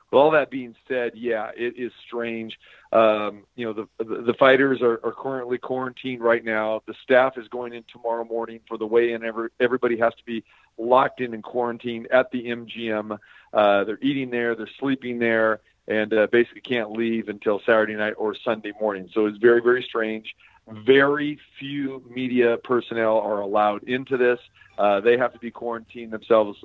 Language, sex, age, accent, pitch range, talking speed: English, male, 40-59, American, 110-125 Hz, 185 wpm